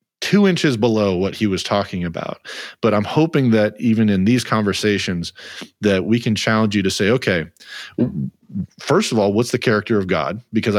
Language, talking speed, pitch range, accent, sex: English, 185 wpm, 95-110 Hz, American, male